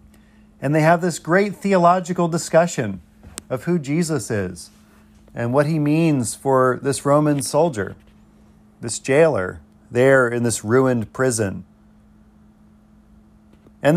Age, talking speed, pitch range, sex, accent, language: 40-59, 115 wpm, 110-150 Hz, male, American, English